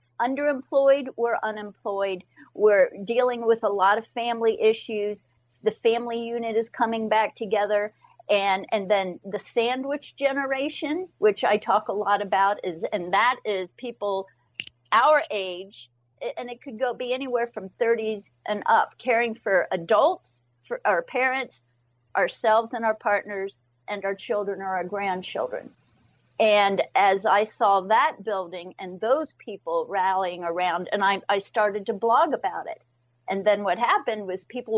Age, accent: 50-69, American